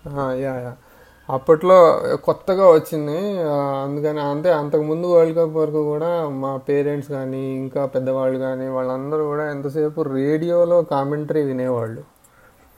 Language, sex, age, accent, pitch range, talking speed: Telugu, male, 30-49, native, 135-160 Hz, 110 wpm